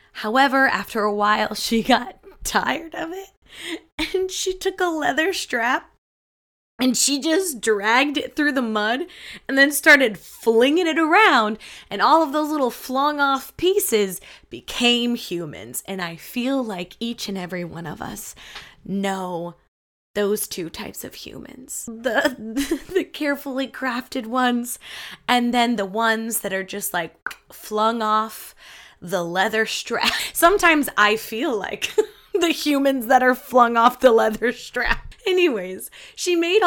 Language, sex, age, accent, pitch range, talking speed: English, female, 20-39, American, 195-275 Hz, 145 wpm